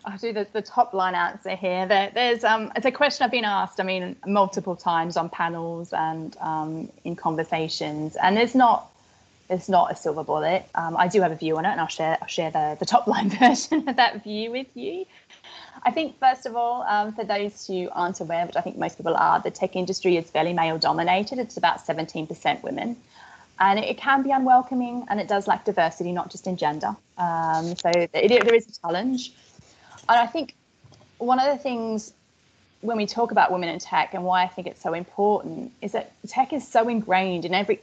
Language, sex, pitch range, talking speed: English, female, 175-235 Hz, 220 wpm